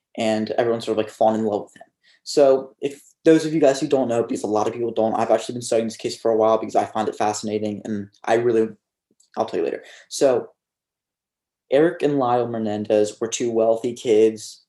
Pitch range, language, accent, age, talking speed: 110-120 Hz, English, American, 20-39, 225 wpm